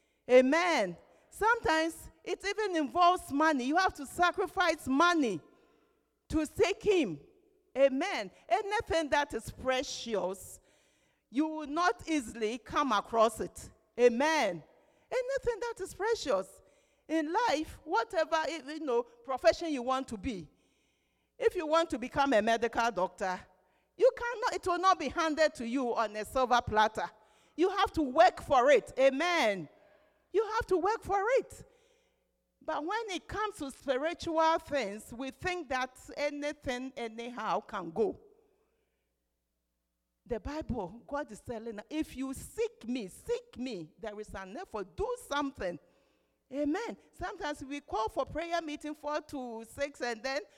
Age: 50-69